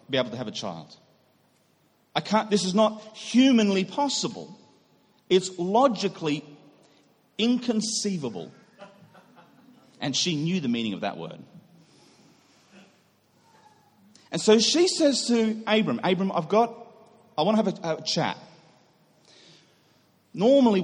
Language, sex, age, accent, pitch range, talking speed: English, male, 40-59, Australian, 145-220 Hz, 120 wpm